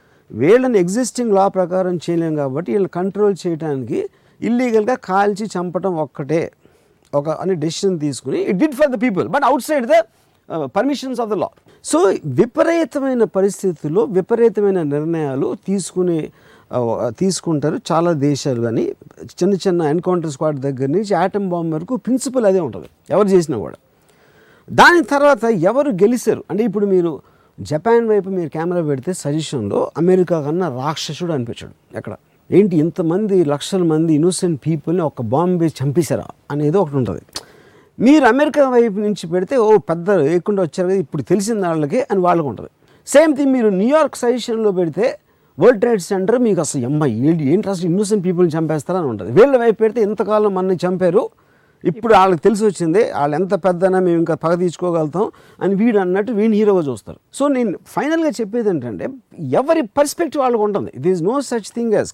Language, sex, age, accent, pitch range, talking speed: Telugu, male, 50-69, native, 165-225 Hz, 150 wpm